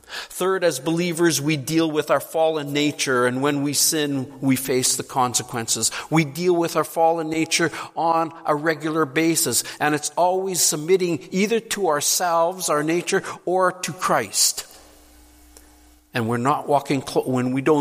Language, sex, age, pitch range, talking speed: English, male, 50-69, 125-175 Hz, 165 wpm